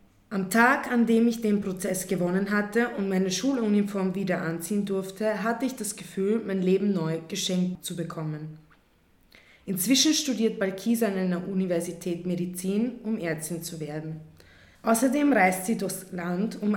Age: 20-39